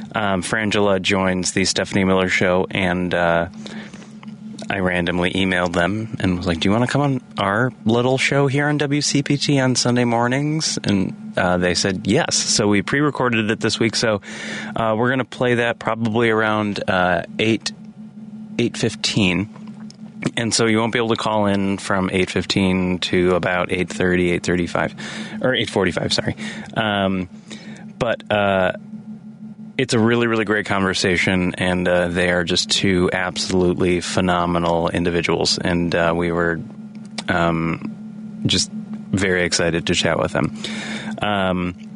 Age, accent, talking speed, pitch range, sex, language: 30-49, American, 150 wpm, 90-130 Hz, male, English